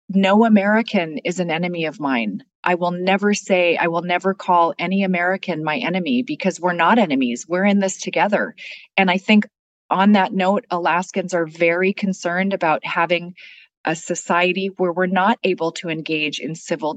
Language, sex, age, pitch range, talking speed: English, female, 30-49, 175-205 Hz, 175 wpm